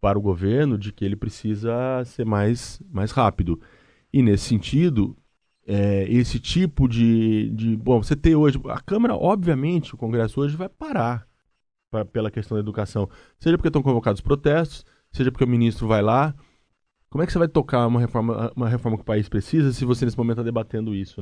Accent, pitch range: Brazilian, 105-135 Hz